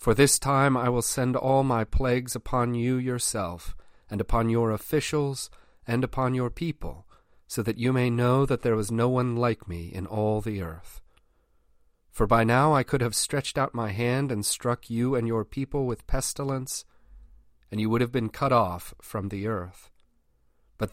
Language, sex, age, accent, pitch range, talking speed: English, male, 40-59, American, 100-125 Hz, 185 wpm